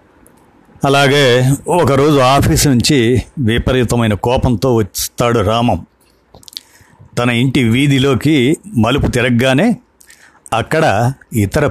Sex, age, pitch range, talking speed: male, 50-69, 110-130 Hz, 75 wpm